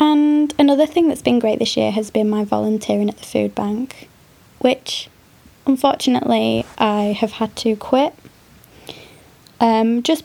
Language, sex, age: English, female, 20-39